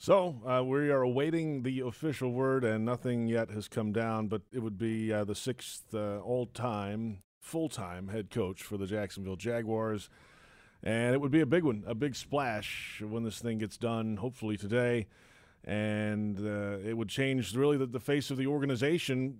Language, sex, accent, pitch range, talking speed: English, male, American, 110-140 Hz, 185 wpm